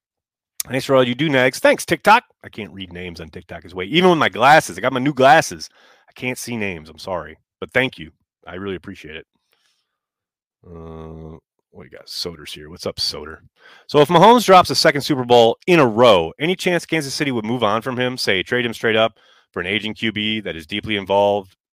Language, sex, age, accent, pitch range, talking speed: English, male, 30-49, American, 85-125 Hz, 225 wpm